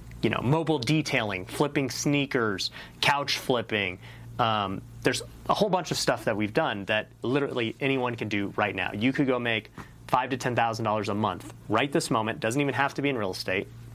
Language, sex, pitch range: English, male, 110-135 Hz